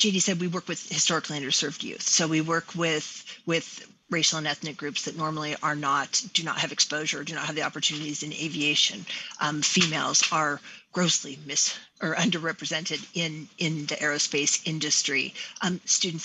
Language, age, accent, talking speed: English, 40-59, American, 170 wpm